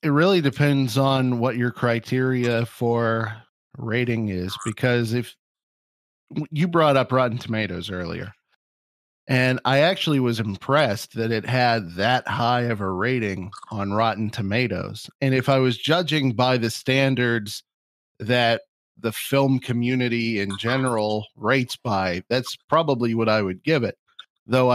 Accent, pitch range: American, 110-130 Hz